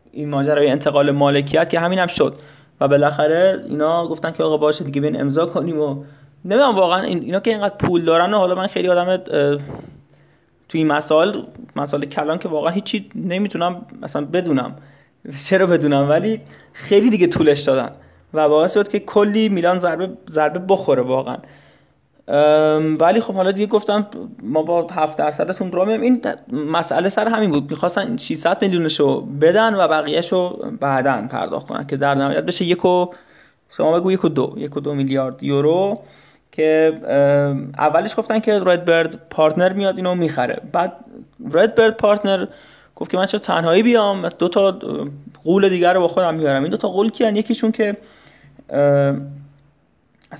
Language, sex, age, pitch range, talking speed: Persian, male, 20-39, 145-195 Hz, 155 wpm